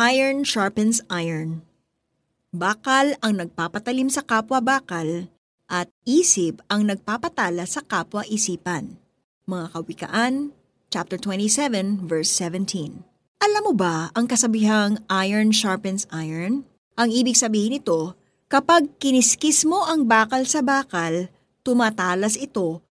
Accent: native